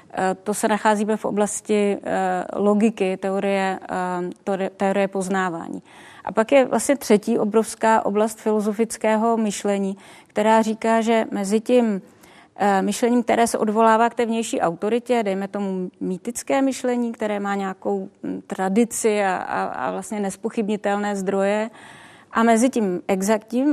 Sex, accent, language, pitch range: female, native, Czech, 205-240 Hz